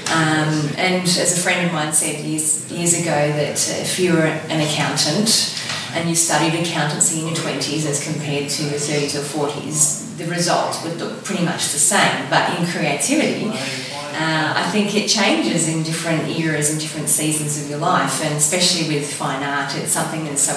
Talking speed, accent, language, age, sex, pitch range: 190 wpm, Australian, English, 30-49, female, 150-180 Hz